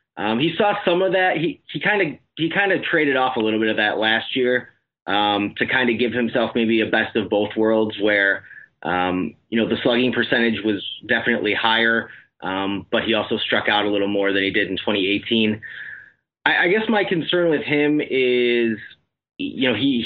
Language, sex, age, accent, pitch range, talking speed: English, male, 30-49, American, 110-140 Hz, 205 wpm